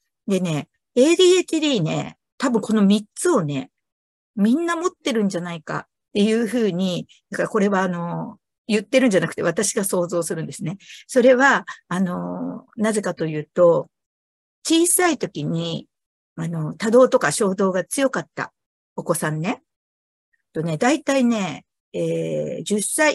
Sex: female